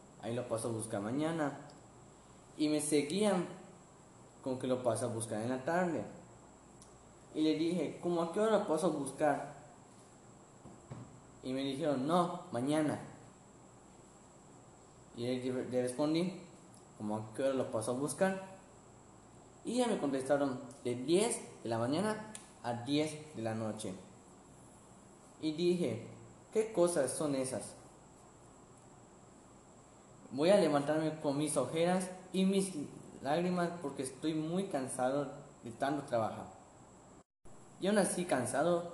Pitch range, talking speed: 130-175 Hz, 130 wpm